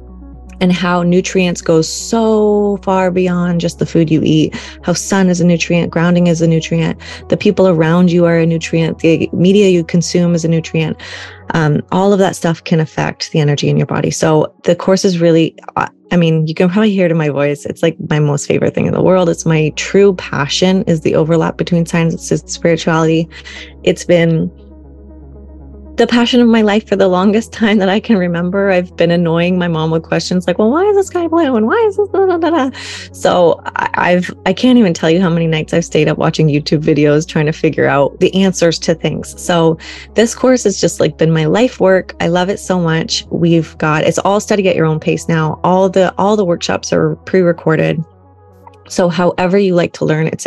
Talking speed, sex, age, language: 215 wpm, female, 20-39, English